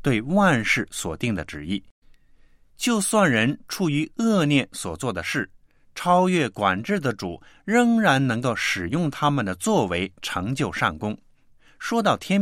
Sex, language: male, Chinese